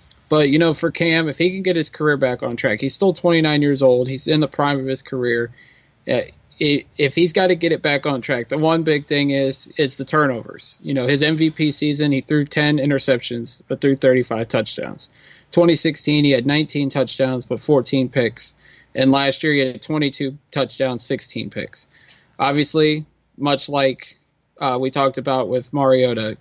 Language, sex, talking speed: English, male, 185 wpm